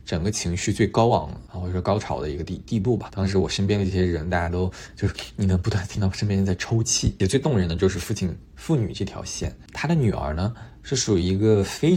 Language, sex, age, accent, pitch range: Chinese, male, 20-39, native, 90-115 Hz